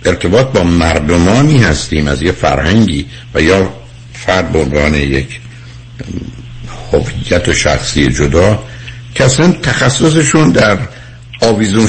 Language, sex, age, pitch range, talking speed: Persian, male, 60-79, 100-125 Hz, 100 wpm